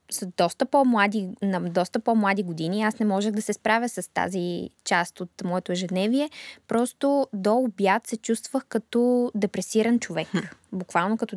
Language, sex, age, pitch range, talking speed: Bulgarian, female, 20-39, 195-235 Hz, 150 wpm